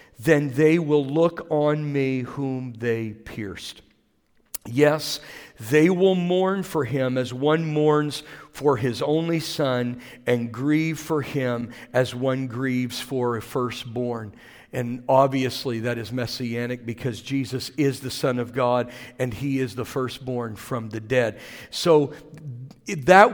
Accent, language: American, English